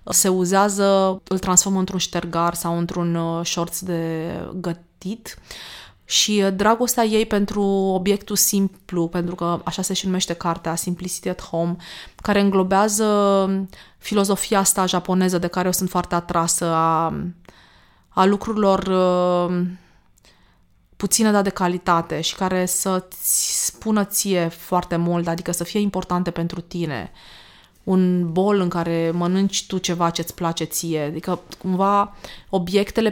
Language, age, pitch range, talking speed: Romanian, 20-39, 175-195 Hz, 130 wpm